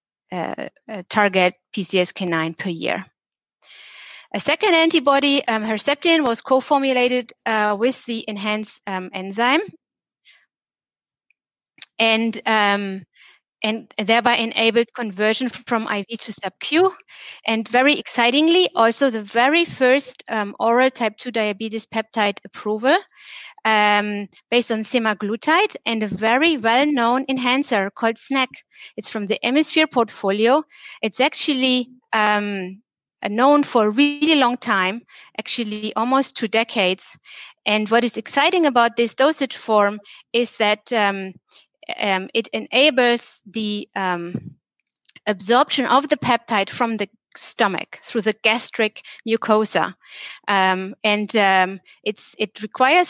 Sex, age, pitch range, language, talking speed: female, 30-49, 205-255 Hz, English, 120 wpm